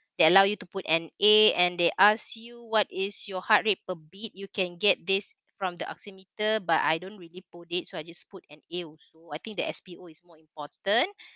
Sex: female